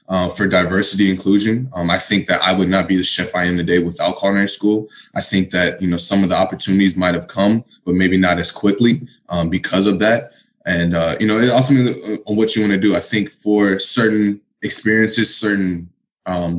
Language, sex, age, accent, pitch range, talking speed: English, male, 20-39, American, 90-110 Hz, 215 wpm